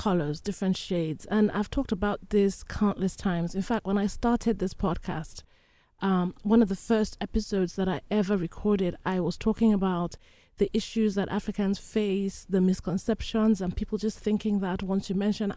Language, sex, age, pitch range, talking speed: English, female, 30-49, 190-230 Hz, 175 wpm